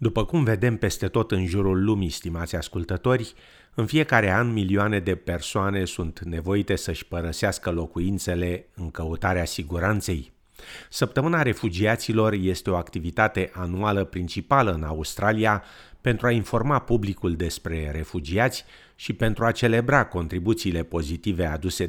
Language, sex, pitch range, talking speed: Romanian, male, 85-110 Hz, 125 wpm